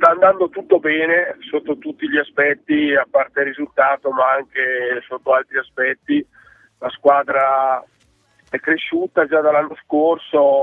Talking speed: 135 wpm